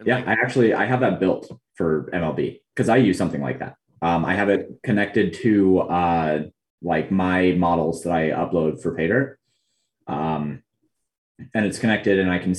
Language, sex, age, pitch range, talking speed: English, male, 20-39, 80-100 Hz, 175 wpm